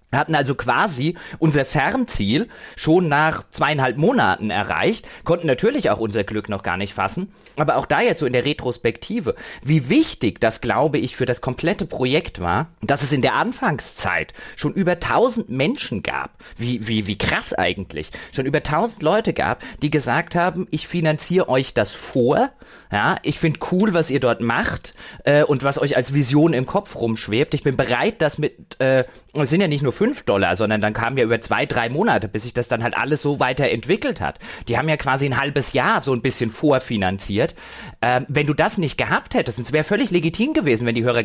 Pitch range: 115-150 Hz